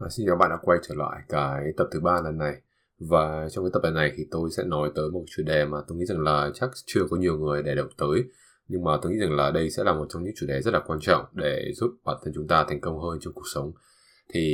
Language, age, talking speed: English, 20-39, 295 wpm